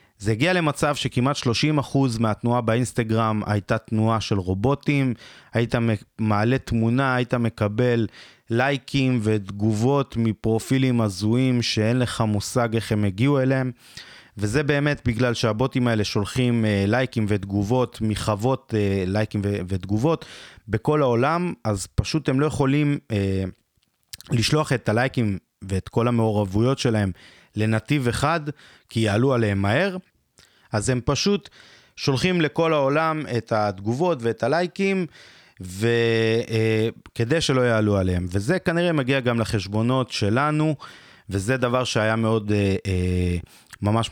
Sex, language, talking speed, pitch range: male, Hebrew, 115 wpm, 105-130 Hz